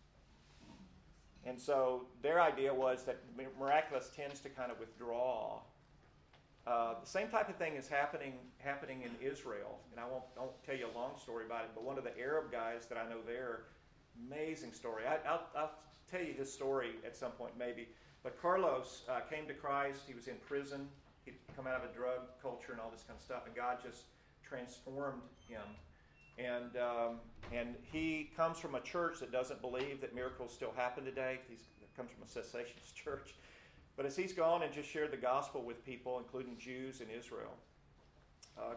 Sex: male